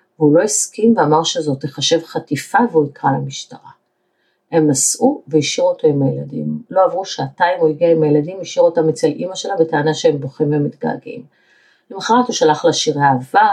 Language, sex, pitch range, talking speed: Hebrew, female, 145-190 Hz, 170 wpm